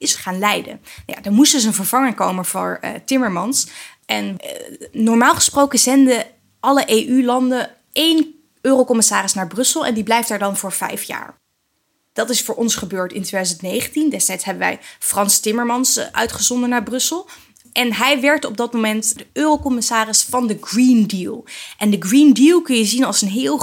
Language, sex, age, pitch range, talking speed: Dutch, female, 20-39, 200-255 Hz, 175 wpm